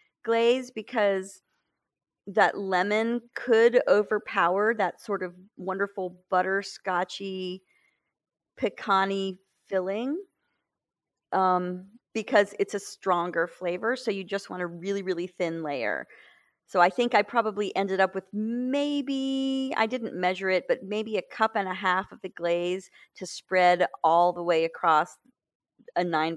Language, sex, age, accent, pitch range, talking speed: English, female, 40-59, American, 175-215 Hz, 135 wpm